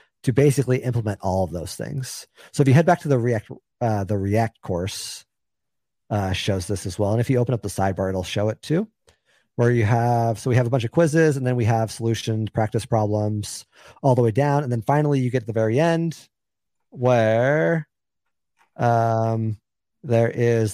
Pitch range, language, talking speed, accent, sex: 110-140 Hz, English, 205 wpm, American, male